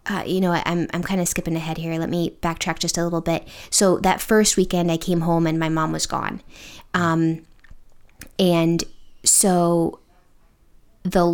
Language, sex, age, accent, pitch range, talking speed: English, female, 20-39, American, 170-195 Hz, 175 wpm